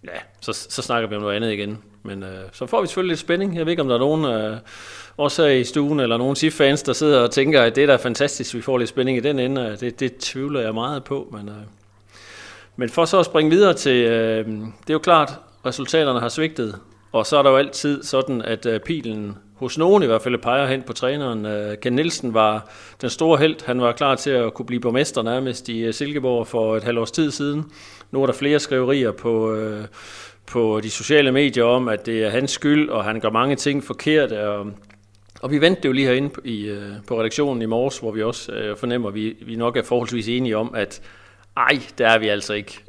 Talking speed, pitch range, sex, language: 240 wpm, 110-140 Hz, male, Danish